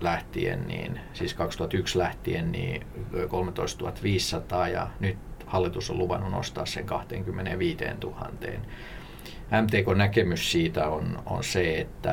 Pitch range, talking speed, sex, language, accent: 90-115 Hz, 115 wpm, male, Finnish, native